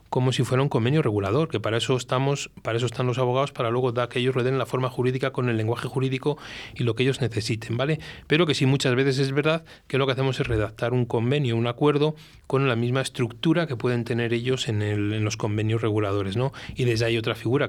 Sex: male